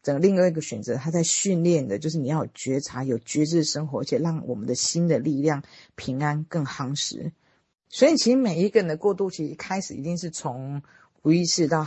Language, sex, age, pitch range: Chinese, female, 40-59, 145-185 Hz